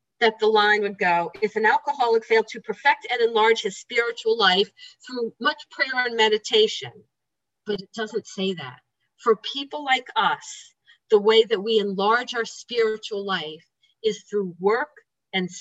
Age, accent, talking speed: 50-69, American, 160 wpm